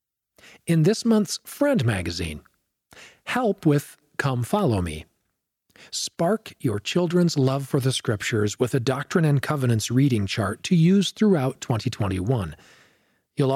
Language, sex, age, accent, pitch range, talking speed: English, male, 40-59, American, 115-165 Hz, 130 wpm